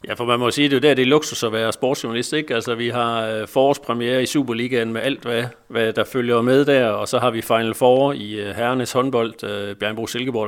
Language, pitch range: Danish, 105-125 Hz